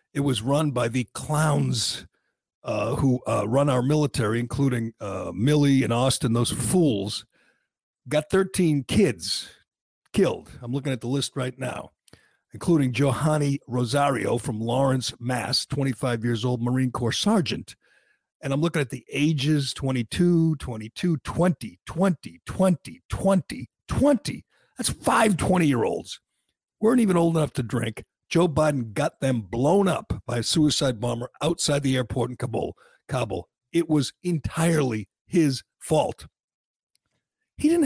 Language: English